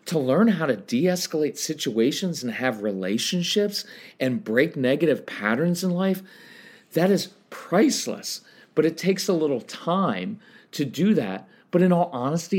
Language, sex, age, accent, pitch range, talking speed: English, male, 40-59, American, 130-195 Hz, 150 wpm